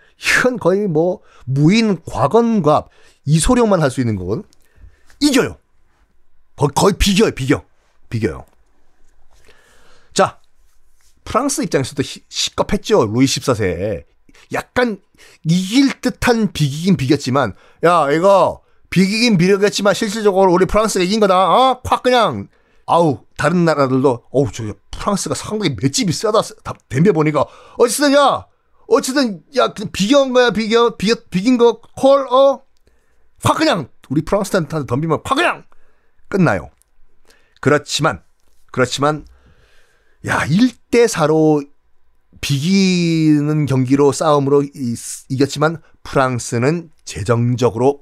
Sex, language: male, Korean